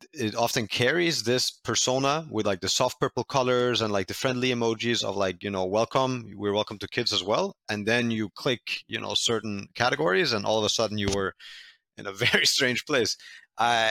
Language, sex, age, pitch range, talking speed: English, male, 30-49, 95-115 Hz, 205 wpm